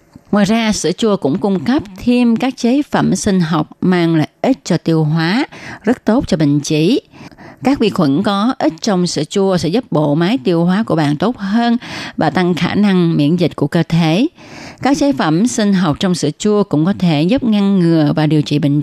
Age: 20-39